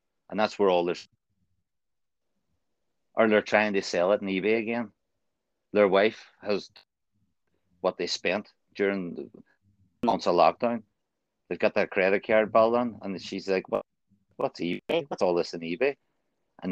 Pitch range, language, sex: 95-150 Hz, English, male